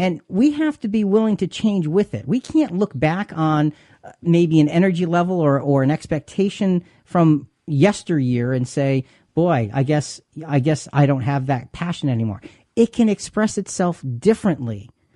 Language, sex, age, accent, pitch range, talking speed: English, male, 40-59, American, 130-180 Hz, 165 wpm